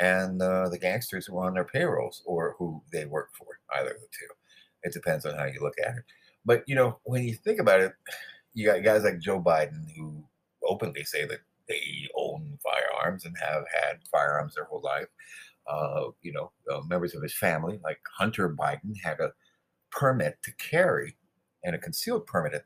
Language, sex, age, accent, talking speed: English, male, 50-69, American, 200 wpm